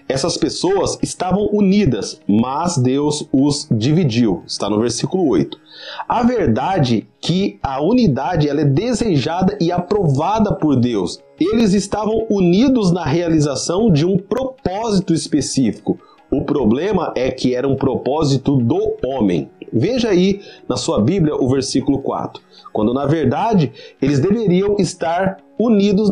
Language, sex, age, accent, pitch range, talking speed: Portuguese, male, 30-49, Brazilian, 145-210 Hz, 130 wpm